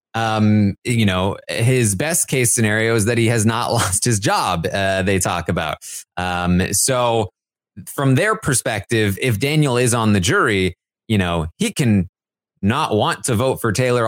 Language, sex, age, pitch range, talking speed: English, male, 20-39, 100-135 Hz, 170 wpm